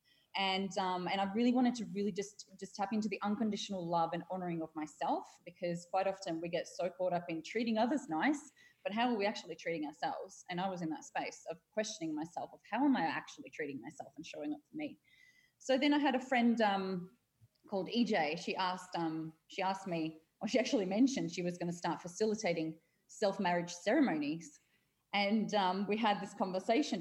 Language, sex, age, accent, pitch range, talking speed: English, female, 20-39, Australian, 175-215 Hz, 205 wpm